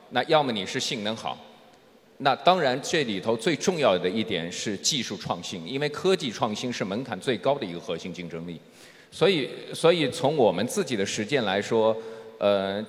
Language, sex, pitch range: Chinese, male, 110-165 Hz